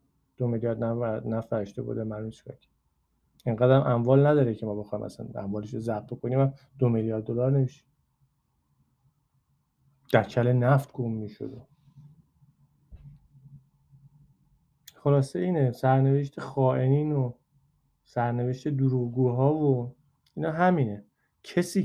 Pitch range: 115-140 Hz